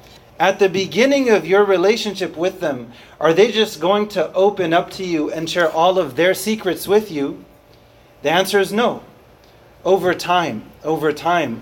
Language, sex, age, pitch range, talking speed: English, male, 30-49, 145-180 Hz, 170 wpm